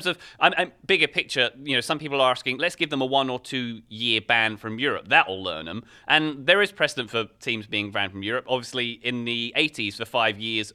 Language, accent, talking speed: English, British, 235 wpm